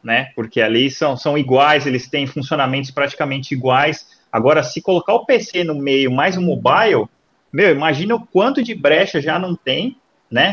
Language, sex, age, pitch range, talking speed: Portuguese, male, 30-49, 140-205 Hz, 175 wpm